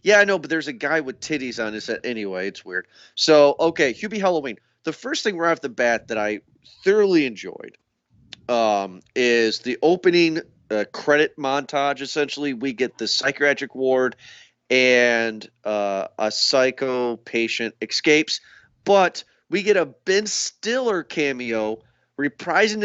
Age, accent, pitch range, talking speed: 30-49, American, 115-165 Hz, 150 wpm